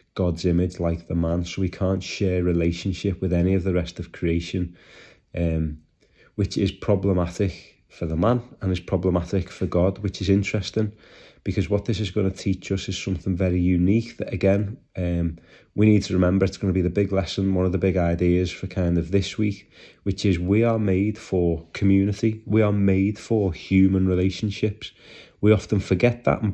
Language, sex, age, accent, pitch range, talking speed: English, male, 30-49, British, 90-100 Hz, 195 wpm